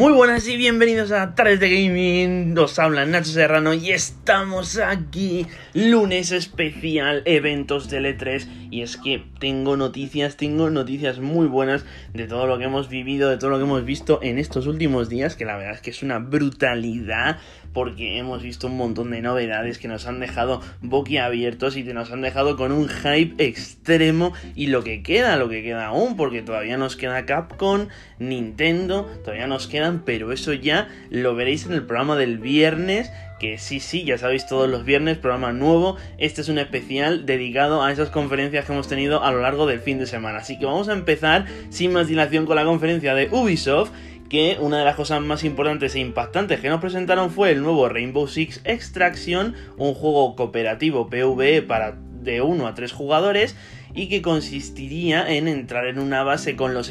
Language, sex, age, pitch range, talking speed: Spanish, male, 20-39, 125-160 Hz, 190 wpm